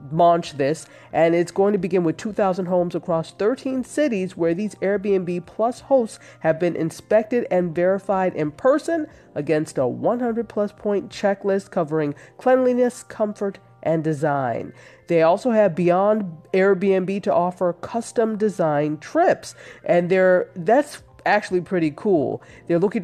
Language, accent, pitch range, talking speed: English, American, 160-215 Hz, 145 wpm